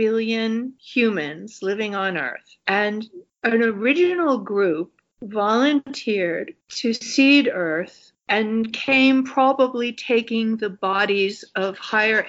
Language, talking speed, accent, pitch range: English, 105 wpm, American, 195-245 Hz